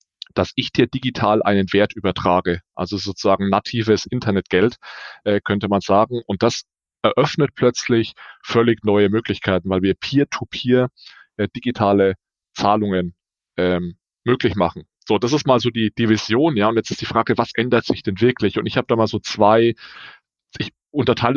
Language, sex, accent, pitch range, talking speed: German, male, German, 100-120 Hz, 165 wpm